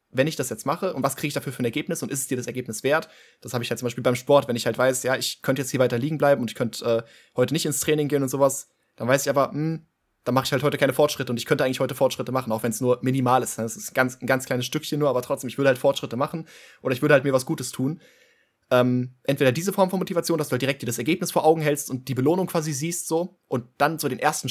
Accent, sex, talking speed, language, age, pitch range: German, male, 310 wpm, German, 20-39, 125-145 Hz